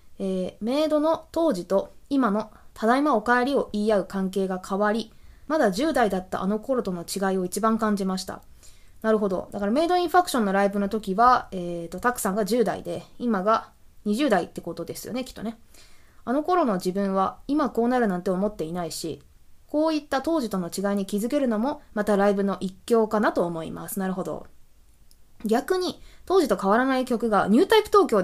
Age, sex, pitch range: 20-39, female, 190-265 Hz